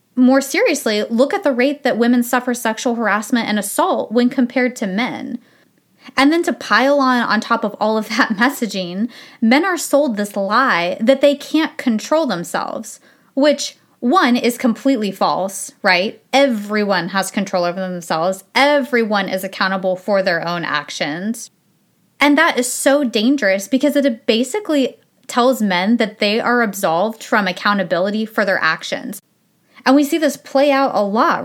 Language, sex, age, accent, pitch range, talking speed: English, female, 20-39, American, 205-270 Hz, 160 wpm